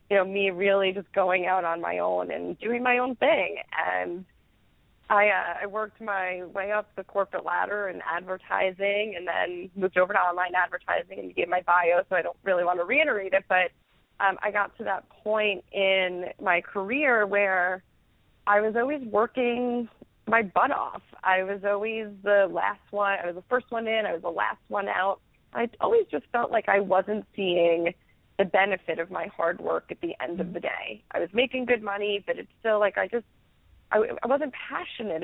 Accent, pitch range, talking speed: American, 180-210 Hz, 200 wpm